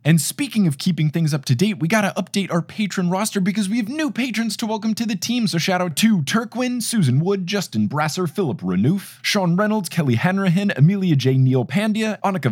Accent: American